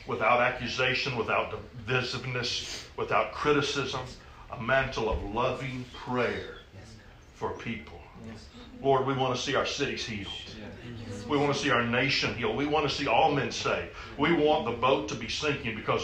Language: English